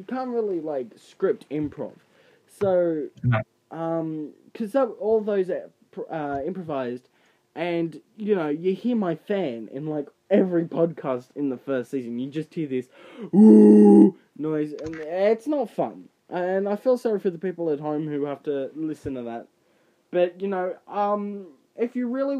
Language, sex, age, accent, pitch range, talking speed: English, male, 10-29, Australian, 140-190 Hz, 160 wpm